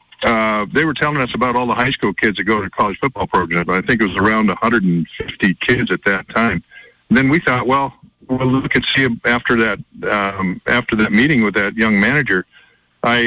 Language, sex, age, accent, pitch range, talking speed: English, male, 50-69, American, 105-130 Hz, 215 wpm